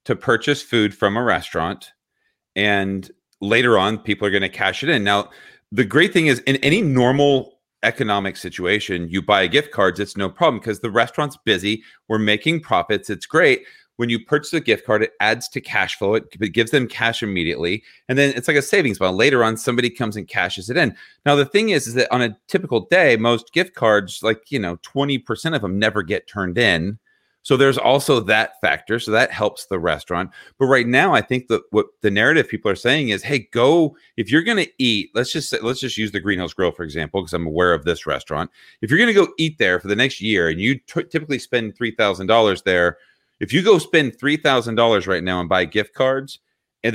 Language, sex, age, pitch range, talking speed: English, male, 40-59, 105-140 Hz, 225 wpm